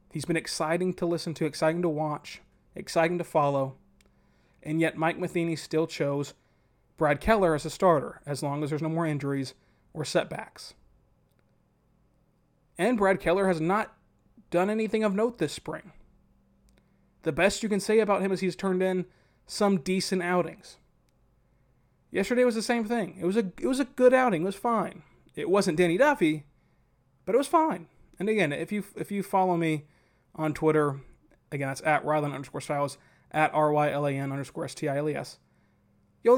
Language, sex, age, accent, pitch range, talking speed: English, male, 30-49, American, 150-200 Hz, 170 wpm